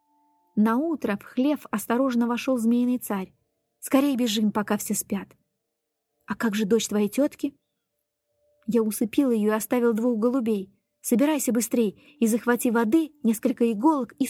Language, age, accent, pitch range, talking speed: Russian, 20-39, native, 210-265 Hz, 140 wpm